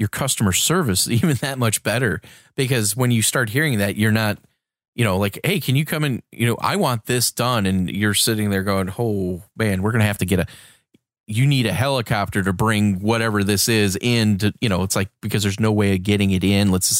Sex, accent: male, American